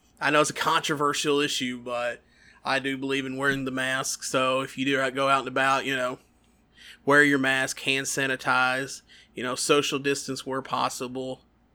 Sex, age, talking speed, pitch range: male, 30-49, 180 wpm, 130-140 Hz